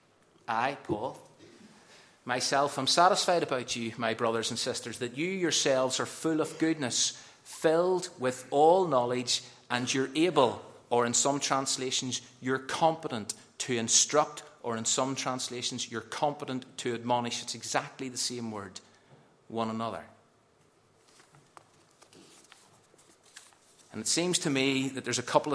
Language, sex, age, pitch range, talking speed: English, male, 30-49, 115-145 Hz, 135 wpm